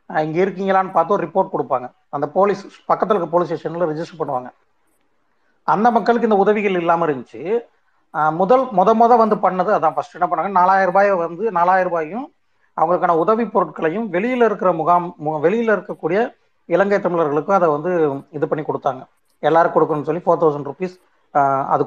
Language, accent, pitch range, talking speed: Tamil, native, 160-200 Hz, 150 wpm